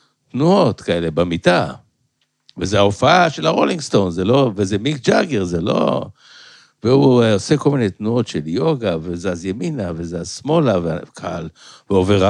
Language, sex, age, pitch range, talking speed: Hebrew, male, 60-79, 95-140 Hz, 135 wpm